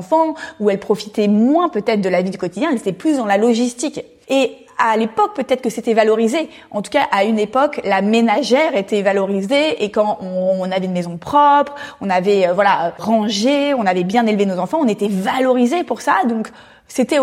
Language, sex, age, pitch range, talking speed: French, female, 20-39, 200-265 Hz, 200 wpm